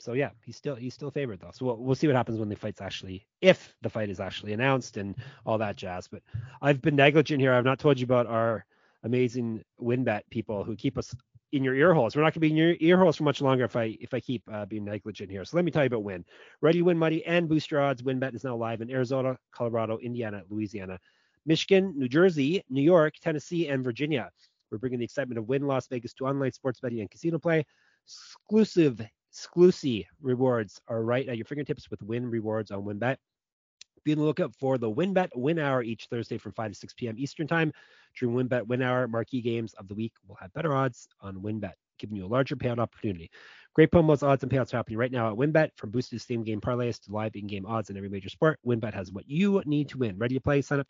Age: 30-49